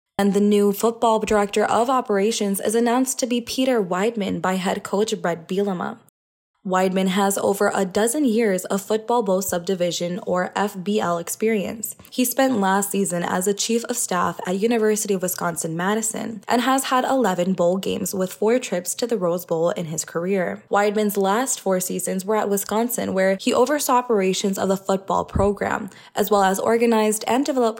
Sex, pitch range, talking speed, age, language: female, 185-225 Hz, 175 wpm, 20-39, English